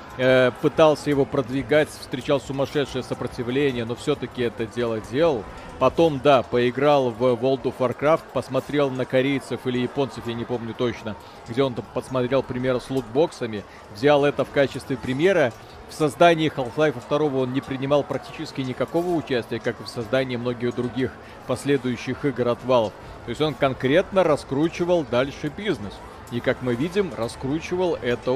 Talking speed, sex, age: 150 wpm, male, 40-59